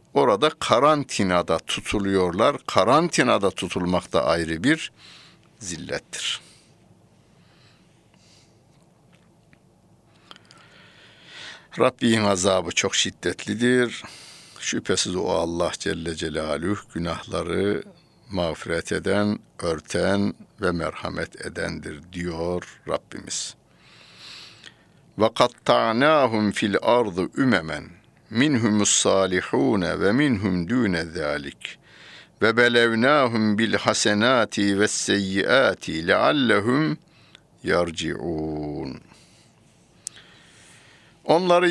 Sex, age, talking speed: male, 60-79, 65 wpm